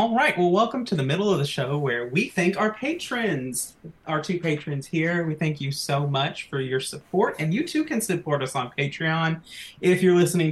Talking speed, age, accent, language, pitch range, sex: 215 wpm, 30-49, American, English, 140-180 Hz, male